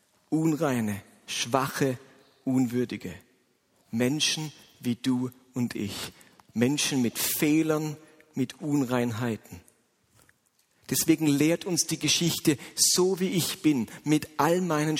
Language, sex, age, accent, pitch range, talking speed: German, male, 50-69, German, 125-175 Hz, 100 wpm